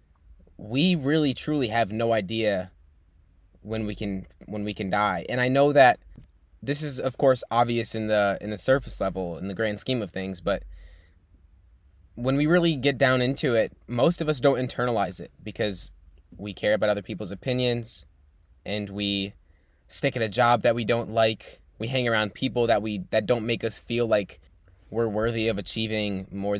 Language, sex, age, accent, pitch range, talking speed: English, male, 10-29, American, 90-115 Hz, 185 wpm